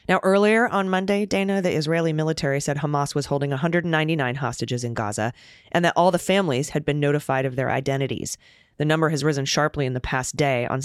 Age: 30-49